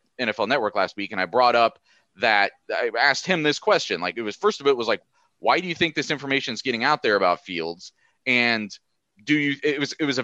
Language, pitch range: English, 115-145 Hz